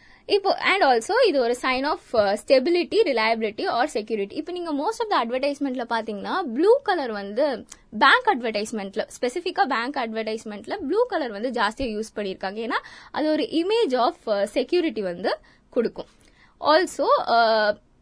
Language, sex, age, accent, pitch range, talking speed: Tamil, female, 20-39, native, 225-345 Hz, 135 wpm